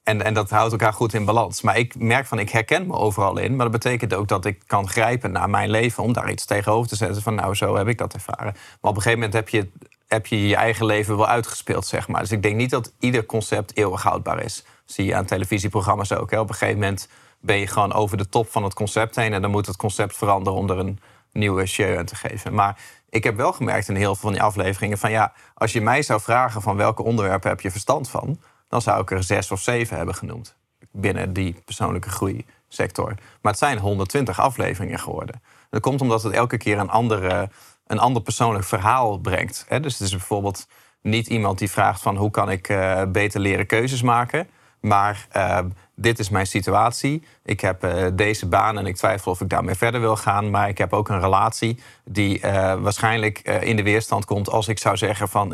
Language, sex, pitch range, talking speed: Dutch, male, 100-115 Hz, 225 wpm